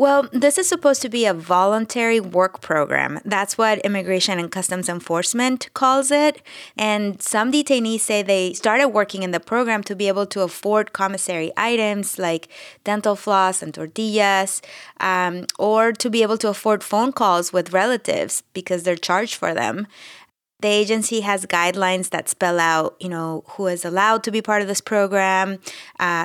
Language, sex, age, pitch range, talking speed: English, female, 20-39, 185-230 Hz, 170 wpm